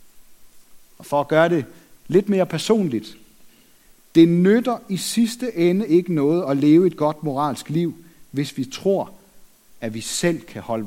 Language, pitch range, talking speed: Danish, 140-195 Hz, 160 wpm